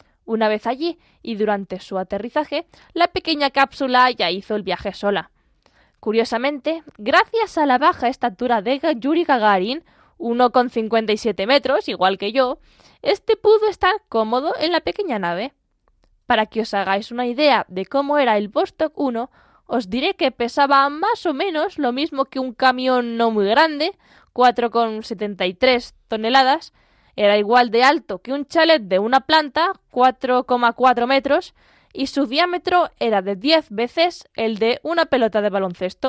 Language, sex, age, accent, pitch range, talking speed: Spanish, female, 10-29, Spanish, 220-300 Hz, 150 wpm